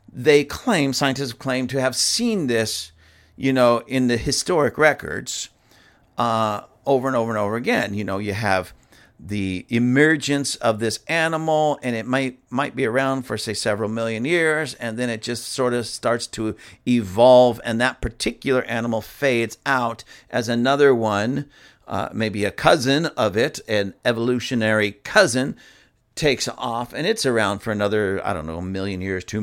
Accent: American